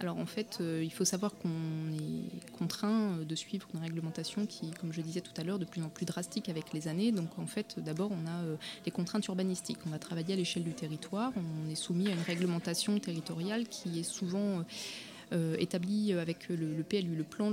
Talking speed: 205 wpm